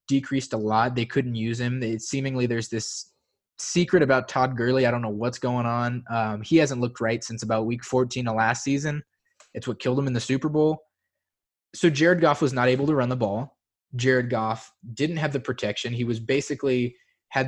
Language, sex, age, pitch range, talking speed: English, male, 20-39, 115-145 Hz, 210 wpm